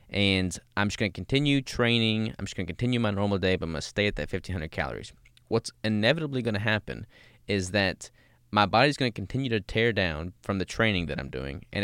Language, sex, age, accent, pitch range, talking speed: English, male, 20-39, American, 90-115 Hz, 235 wpm